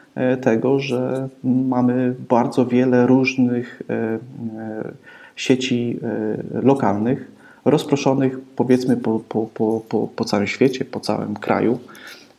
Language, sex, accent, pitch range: Polish, male, native, 115-135 Hz